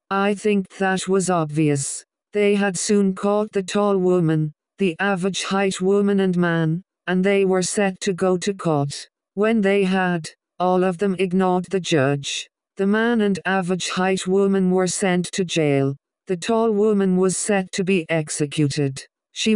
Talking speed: 165 wpm